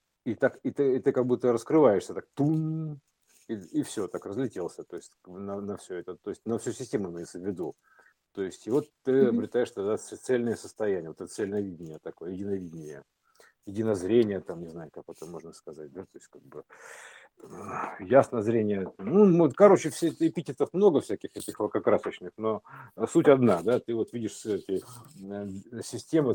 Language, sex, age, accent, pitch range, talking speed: Russian, male, 50-69, native, 95-145 Hz, 175 wpm